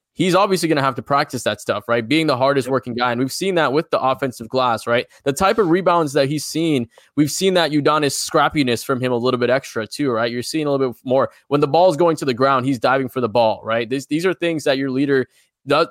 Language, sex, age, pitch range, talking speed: English, male, 20-39, 125-150 Hz, 270 wpm